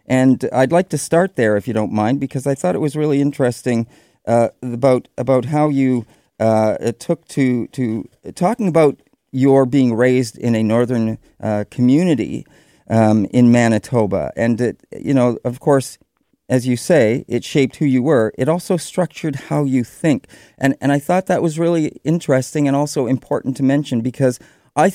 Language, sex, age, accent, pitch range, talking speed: English, male, 40-59, American, 115-145 Hz, 180 wpm